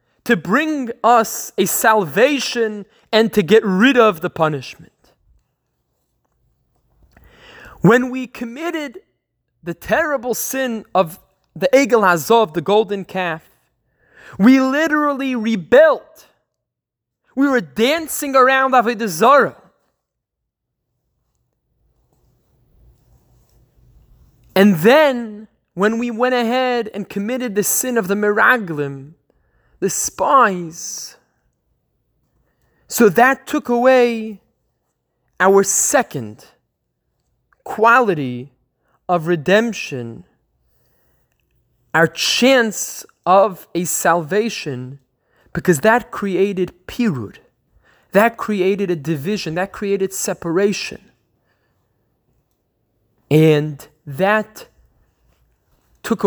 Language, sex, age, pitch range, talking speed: English, male, 20-39, 170-240 Hz, 80 wpm